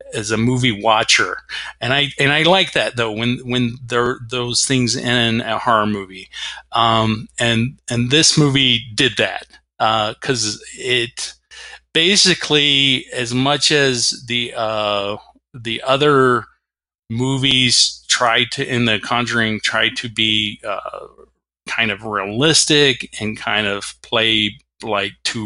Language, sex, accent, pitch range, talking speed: English, male, American, 110-140 Hz, 135 wpm